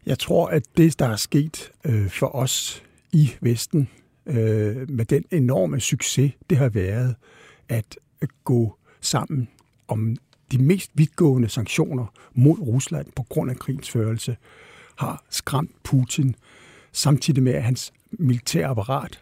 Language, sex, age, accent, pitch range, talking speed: Danish, male, 60-79, native, 120-155 Hz, 130 wpm